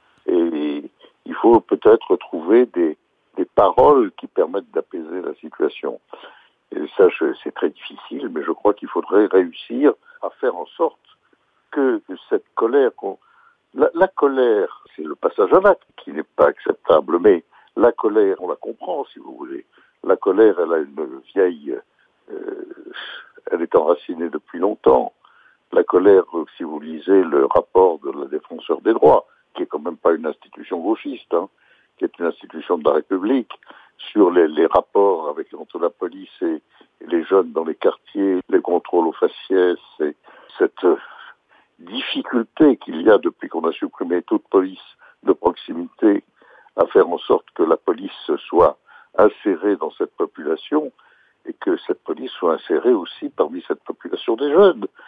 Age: 60-79